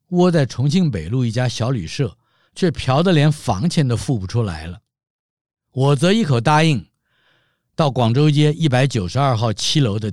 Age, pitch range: 50-69, 110-155 Hz